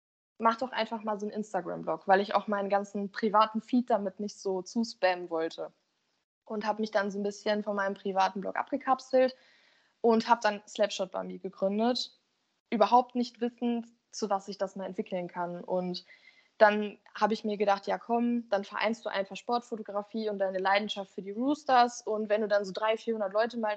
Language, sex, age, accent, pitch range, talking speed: German, female, 20-39, German, 200-240 Hz, 190 wpm